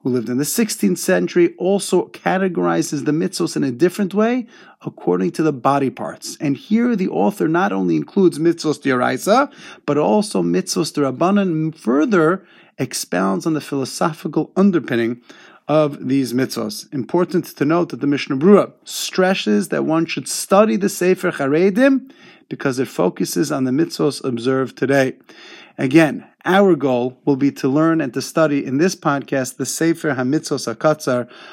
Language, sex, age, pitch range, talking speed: English, male, 30-49, 130-175 Hz, 155 wpm